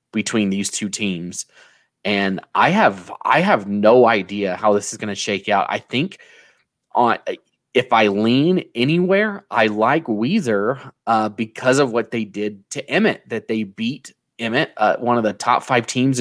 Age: 30-49